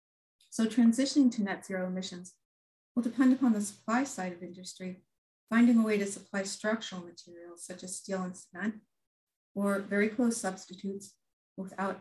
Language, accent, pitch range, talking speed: English, American, 185-210 Hz, 155 wpm